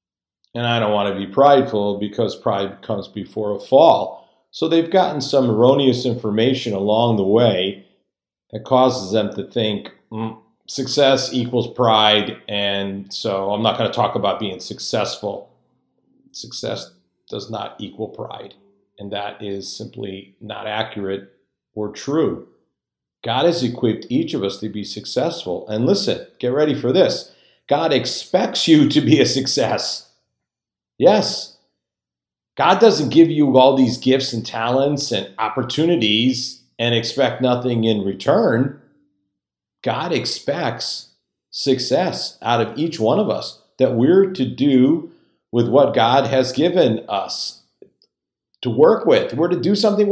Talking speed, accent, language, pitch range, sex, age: 140 wpm, American, English, 105-135 Hz, male, 50-69